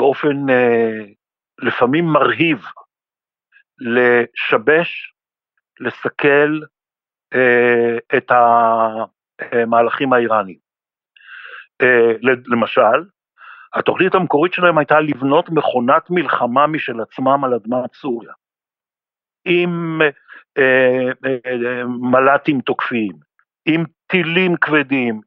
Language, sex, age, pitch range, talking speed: Hebrew, male, 60-79, 120-155 Hz, 80 wpm